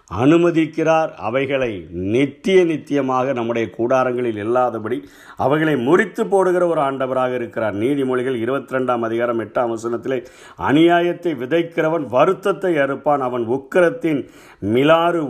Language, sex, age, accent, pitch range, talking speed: Tamil, male, 50-69, native, 120-170 Hz, 100 wpm